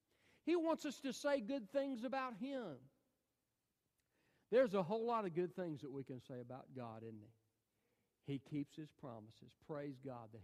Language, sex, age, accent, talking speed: English, male, 50-69, American, 180 wpm